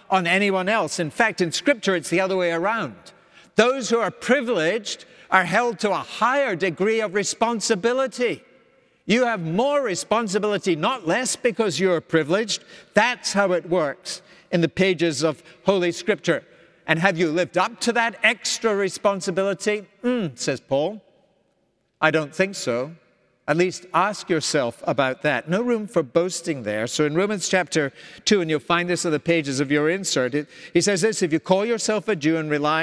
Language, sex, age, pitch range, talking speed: English, male, 60-79, 160-210 Hz, 175 wpm